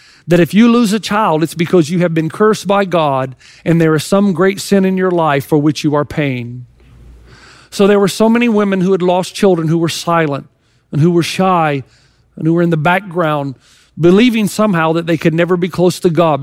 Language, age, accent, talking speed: English, 50-69, American, 225 wpm